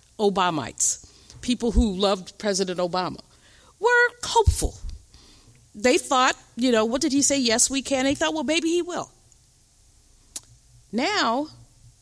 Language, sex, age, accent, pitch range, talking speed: English, female, 40-59, American, 170-255 Hz, 130 wpm